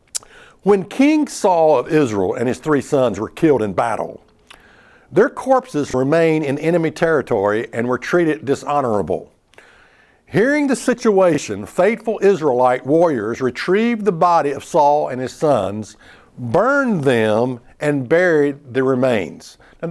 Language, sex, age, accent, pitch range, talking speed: English, male, 60-79, American, 130-190 Hz, 135 wpm